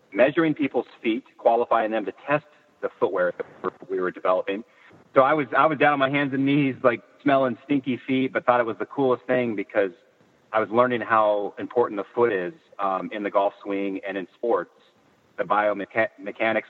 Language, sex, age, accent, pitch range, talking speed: English, male, 40-59, American, 100-130 Hz, 195 wpm